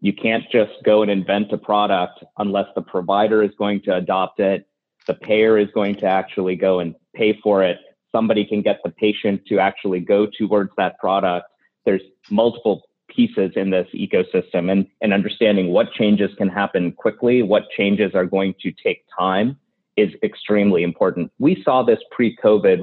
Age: 30-49